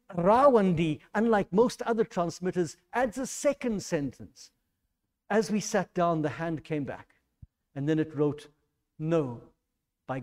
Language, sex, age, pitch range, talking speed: English, male, 60-79, 150-195 Hz, 135 wpm